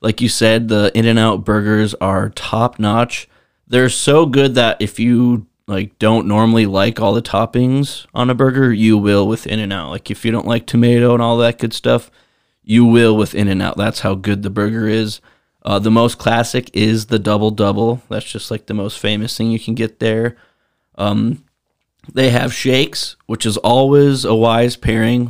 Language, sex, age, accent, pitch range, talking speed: English, male, 20-39, American, 105-120 Hz, 185 wpm